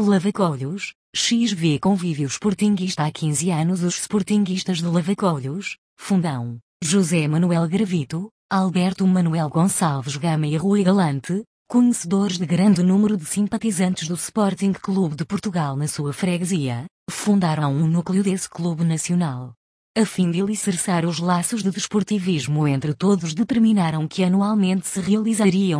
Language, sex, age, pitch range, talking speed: Portuguese, female, 20-39, 160-200 Hz, 130 wpm